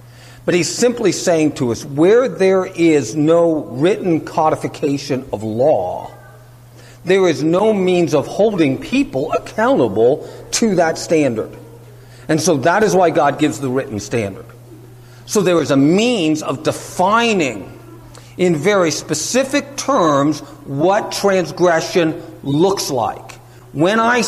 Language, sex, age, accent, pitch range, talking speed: English, male, 50-69, American, 120-175 Hz, 130 wpm